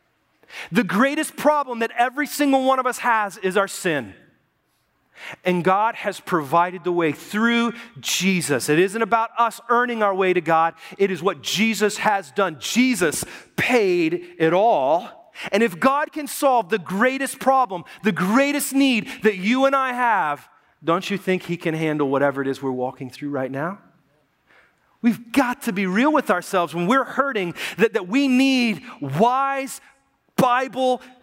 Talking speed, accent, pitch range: 165 wpm, American, 165-250 Hz